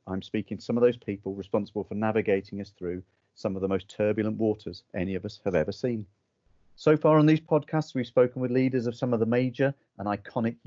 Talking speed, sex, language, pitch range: 225 wpm, male, English, 105-125 Hz